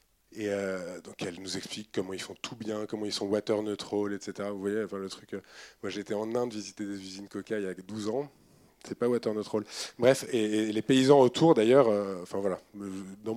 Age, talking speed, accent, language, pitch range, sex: 20-39, 230 wpm, French, French, 110-145 Hz, male